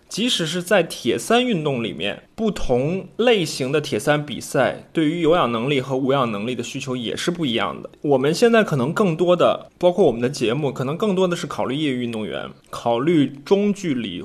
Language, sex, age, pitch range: Chinese, male, 20-39, 125-175 Hz